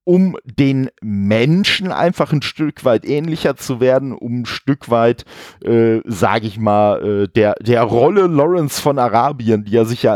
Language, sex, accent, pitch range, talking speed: German, male, German, 110-145 Hz, 170 wpm